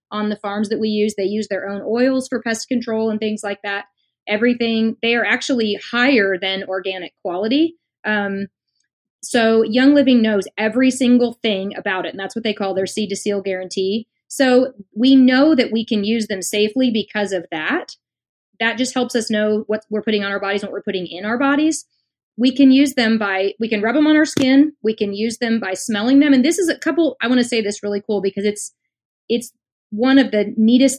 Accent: American